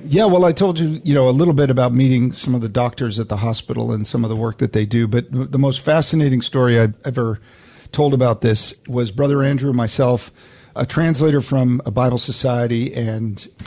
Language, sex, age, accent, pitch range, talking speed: English, male, 50-69, American, 115-140 Hz, 210 wpm